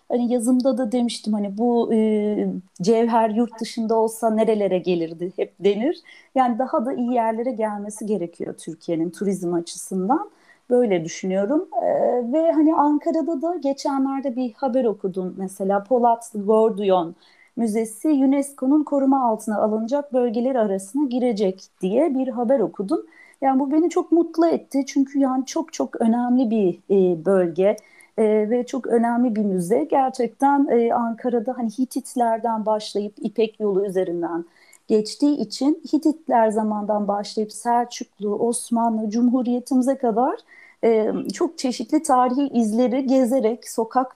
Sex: female